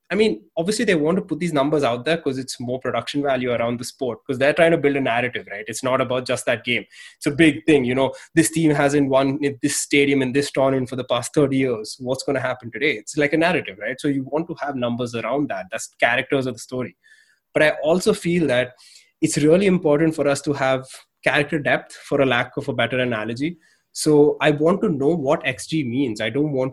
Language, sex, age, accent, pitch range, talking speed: English, male, 20-39, Indian, 125-155 Hz, 240 wpm